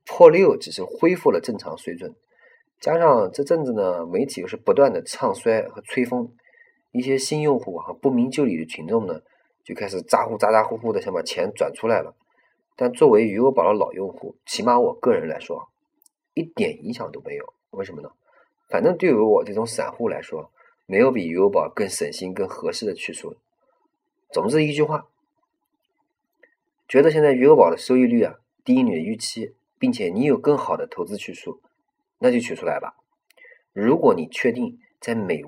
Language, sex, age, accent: Chinese, male, 30-49, native